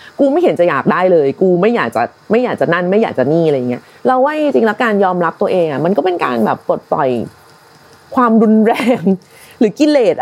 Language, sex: Thai, female